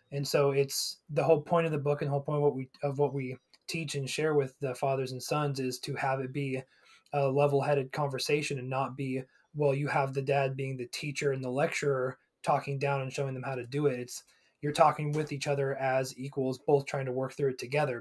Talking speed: 240 wpm